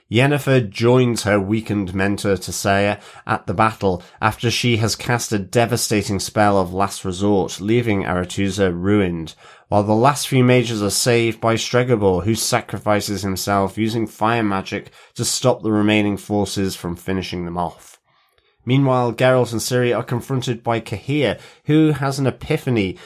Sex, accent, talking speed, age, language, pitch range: male, British, 150 wpm, 30-49, English, 100-125 Hz